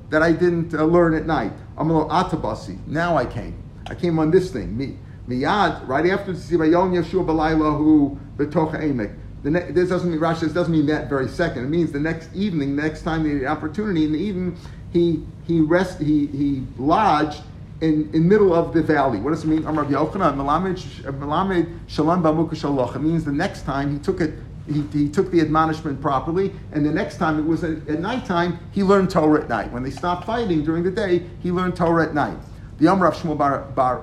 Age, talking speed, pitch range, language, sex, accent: 50-69, 190 wpm, 145-175 Hz, English, male, American